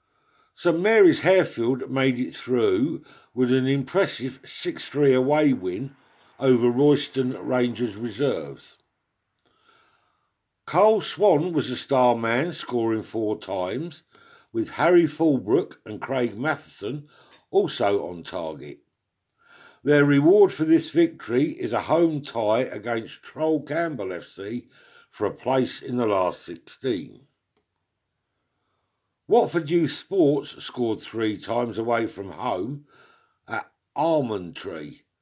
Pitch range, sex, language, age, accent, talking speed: 115-160 Hz, male, English, 50-69, British, 115 wpm